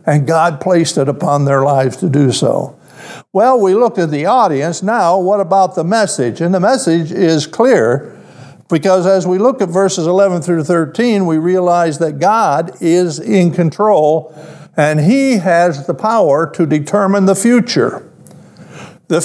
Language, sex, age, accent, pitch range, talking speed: English, male, 60-79, American, 155-220 Hz, 160 wpm